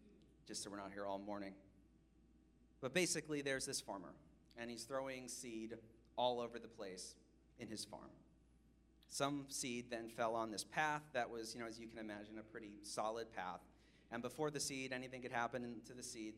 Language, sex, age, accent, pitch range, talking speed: English, male, 40-59, American, 110-130 Hz, 190 wpm